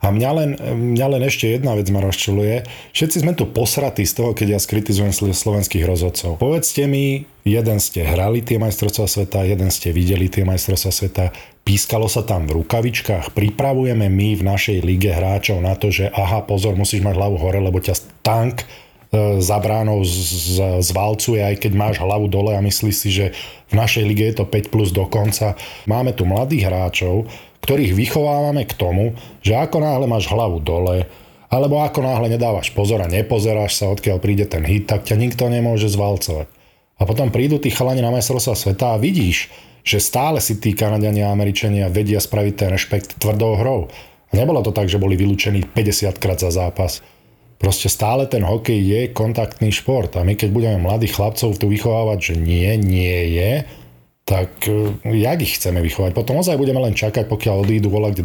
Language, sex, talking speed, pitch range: Slovak, male, 180 wpm, 100-115 Hz